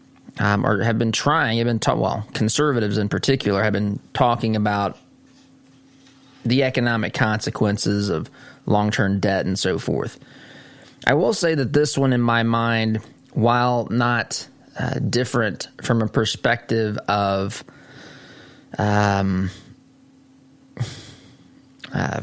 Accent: American